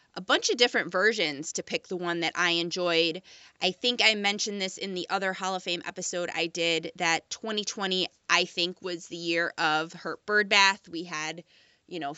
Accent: American